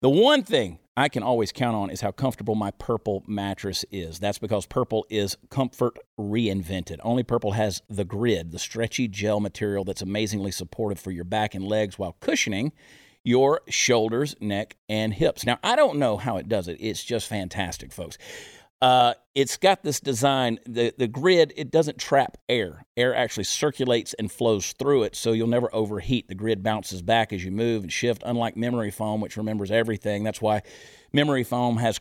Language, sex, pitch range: English, male, 105-130 Hz